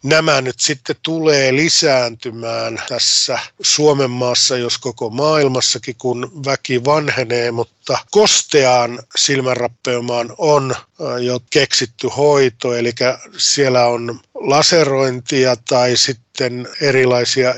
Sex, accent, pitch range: male, native, 120-145 Hz